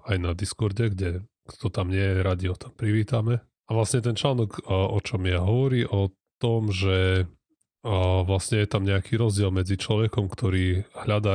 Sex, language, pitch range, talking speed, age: male, Slovak, 95-110 Hz, 170 wpm, 30-49